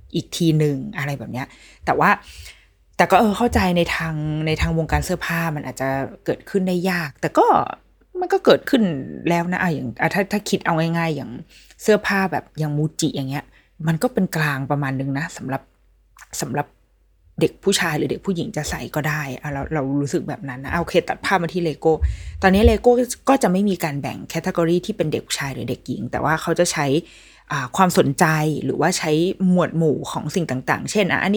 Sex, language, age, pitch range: female, Thai, 20-39, 150-205 Hz